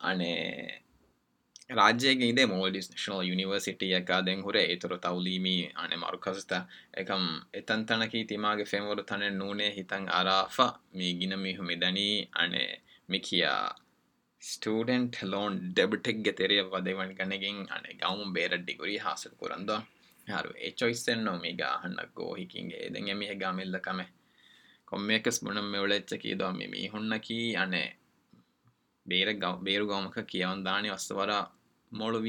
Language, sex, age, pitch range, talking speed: Urdu, male, 20-39, 95-110 Hz, 55 wpm